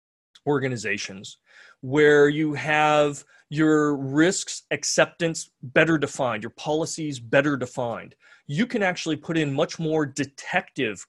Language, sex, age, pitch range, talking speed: English, male, 30-49, 145-175 Hz, 115 wpm